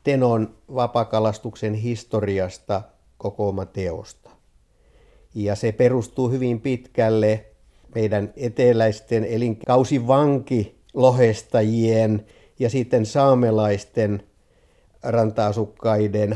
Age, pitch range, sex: 50-69, 100-115 Hz, male